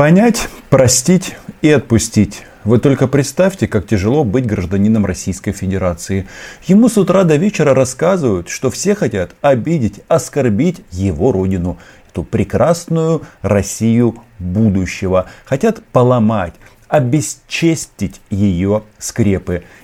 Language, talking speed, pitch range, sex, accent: Russian, 105 wpm, 95-130 Hz, male, native